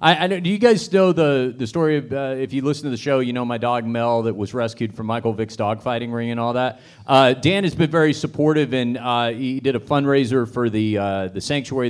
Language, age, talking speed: English, 40-59, 250 wpm